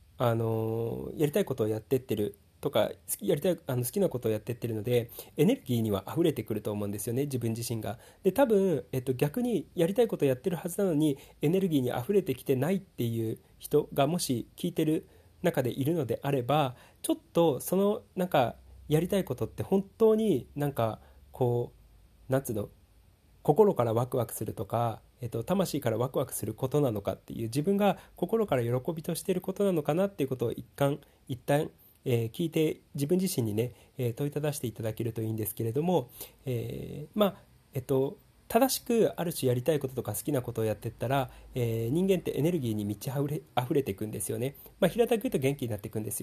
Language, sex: Japanese, male